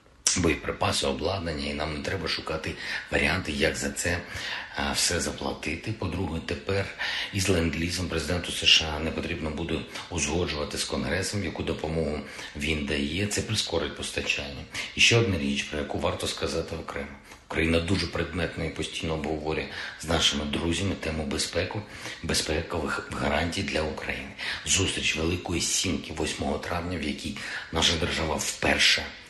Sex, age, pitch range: male, 50-69, 75-90 Hz